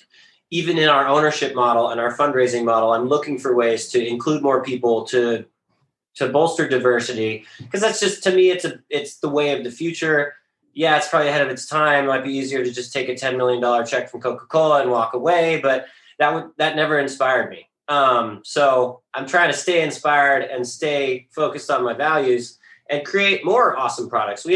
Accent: American